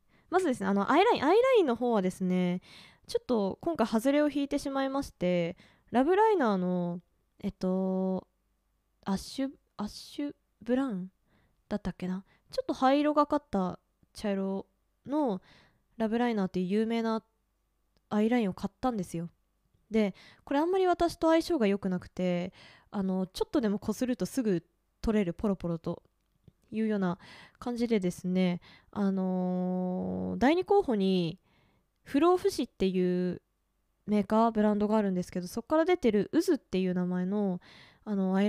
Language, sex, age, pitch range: Japanese, female, 20-39, 185-255 Hz